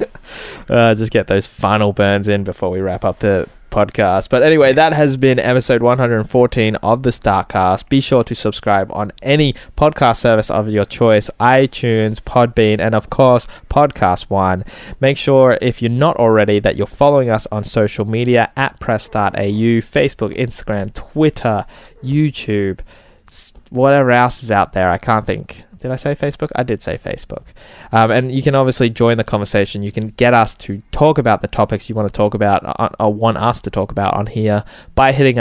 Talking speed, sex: 185 wpm, male